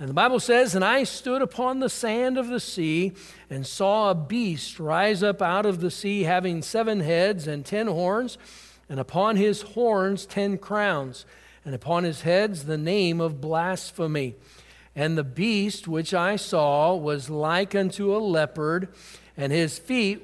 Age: 60-79